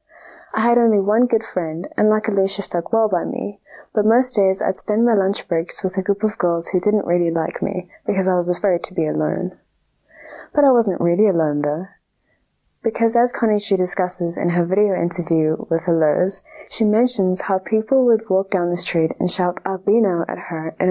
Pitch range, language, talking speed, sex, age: 175-215 Hz, English, 200 wpm, female, 20-39